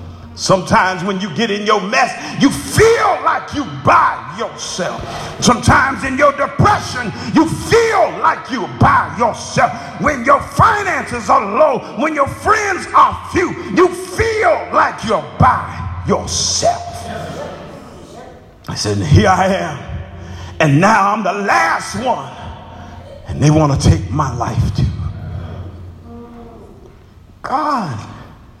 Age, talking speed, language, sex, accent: 50-69, 125 wpm, English, male, American